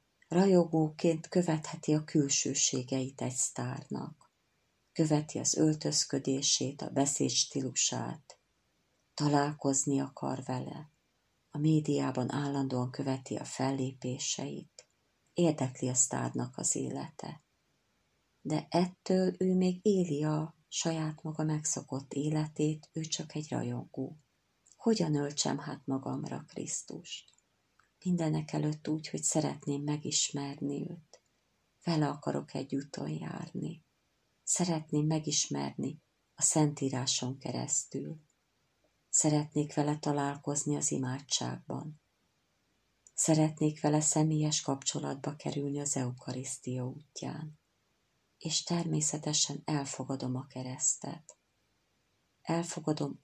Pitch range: 135-155 Hz